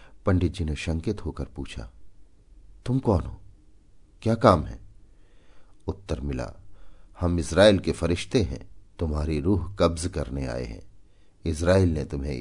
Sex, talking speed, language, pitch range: male, 135 wpm, Hindi, 75-100 Hz